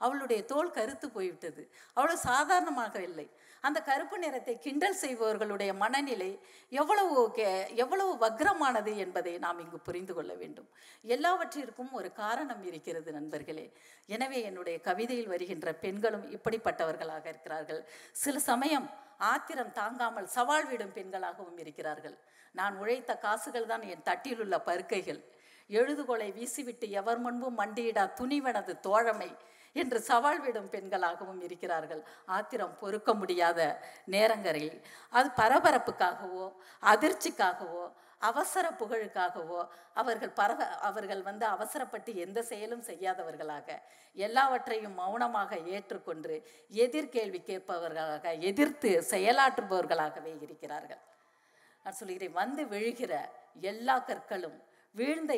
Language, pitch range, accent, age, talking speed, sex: Tamil, 180-255 Hz, native, 50-69, 100 wpm, female